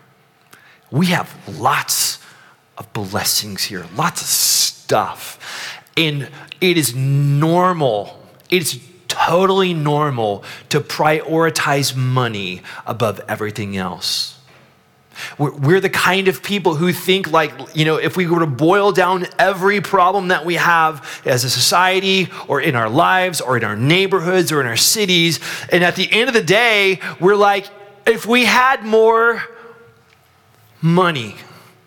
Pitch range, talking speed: 140-185 Hz, 135 wpm